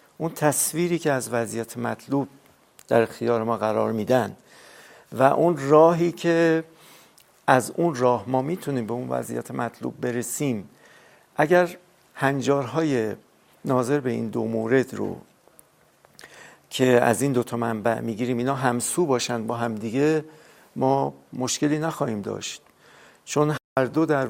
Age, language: 50-69, Persian